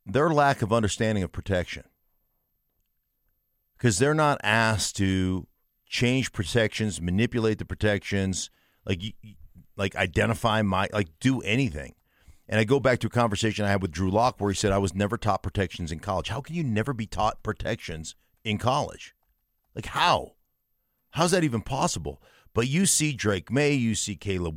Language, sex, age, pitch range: English, male, 50-69, 95-125 Hz